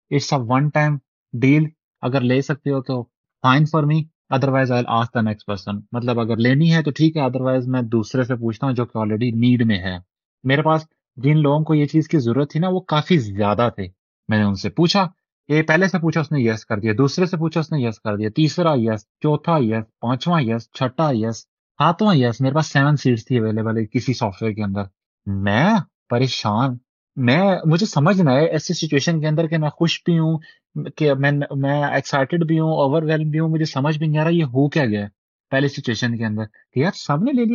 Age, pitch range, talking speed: 30-49, 120-160 Hz, 135 wpm